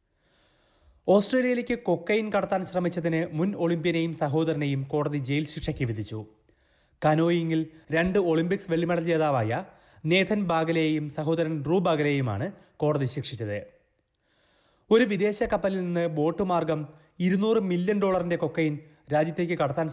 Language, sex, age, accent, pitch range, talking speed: Malayalam, male, 30-49, native, 135-175 Hz, 100 wpm